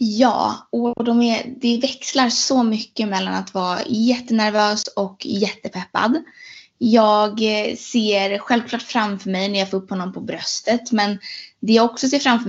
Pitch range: 195-245 Hz